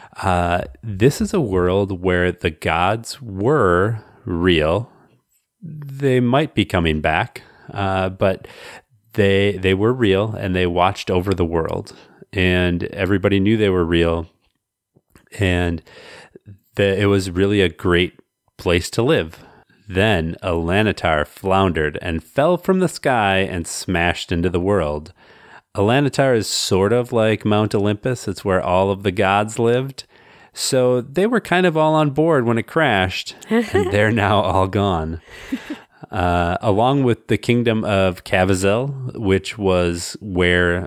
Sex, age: male, 30-49